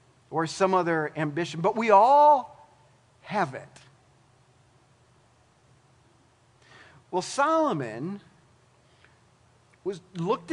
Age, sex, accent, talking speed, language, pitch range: 40-59, male, American, 75 wpm, English, 130-210 Hz